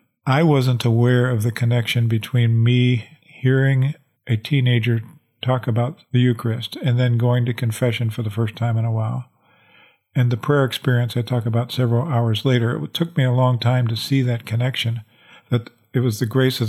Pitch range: 115-130 Hz